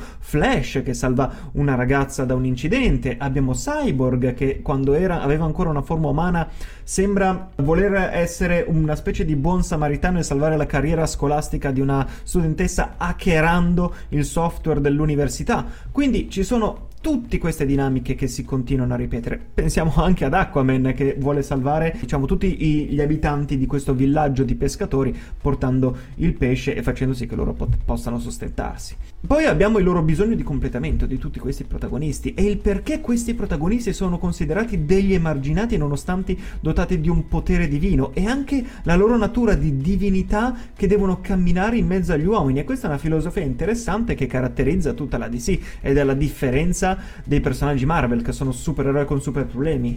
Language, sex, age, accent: Italian, male, 30-49, native